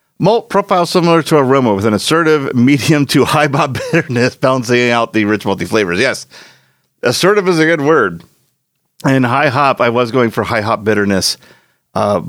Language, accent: English, American